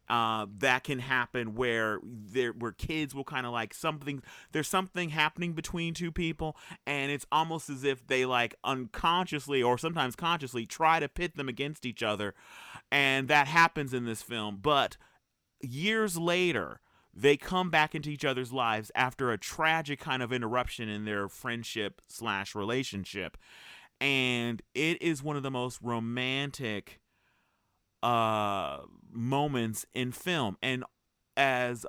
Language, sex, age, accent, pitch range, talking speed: English, male, 30-49, American, 110-145 Hz, 145 wpm